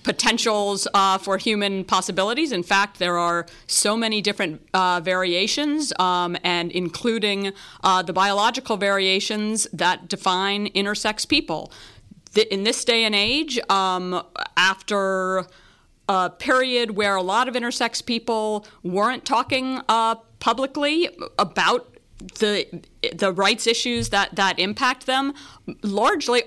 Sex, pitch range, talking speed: female, 195-230 Hz, 120 wpm